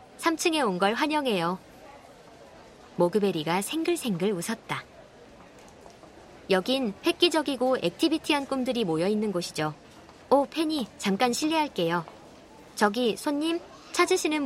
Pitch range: 180-255 Hz